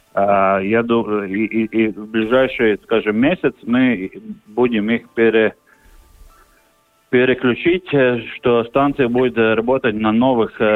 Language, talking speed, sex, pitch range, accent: Russian, 105 wpm, male, 105-125 Hz, native